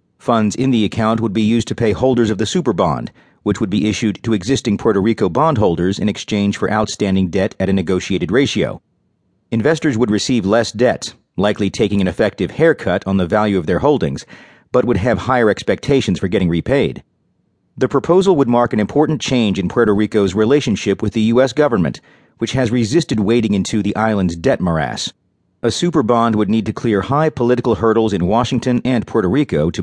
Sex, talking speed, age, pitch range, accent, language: male, 195 wpm, 40-59, 100-125 Hz, American, English